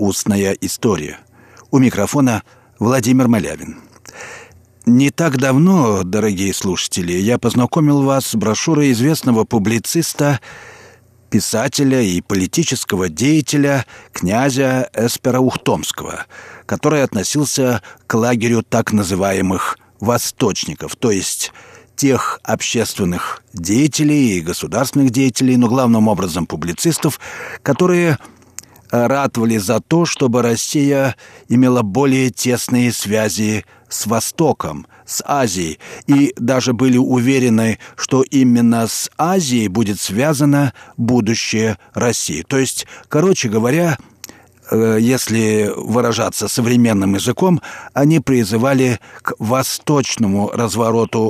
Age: 50-69